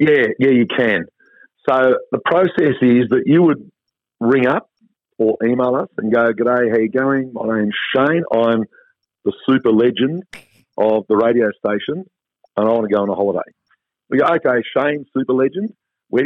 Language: English